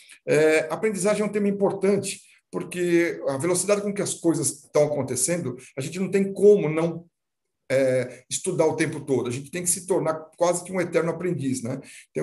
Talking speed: 190 wpm